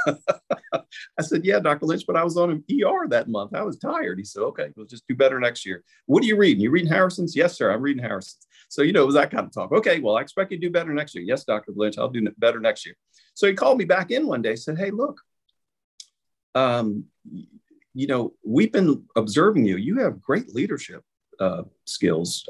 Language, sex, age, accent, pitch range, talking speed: English, male, 40-59, American, 95-140 Hz, 235 wpm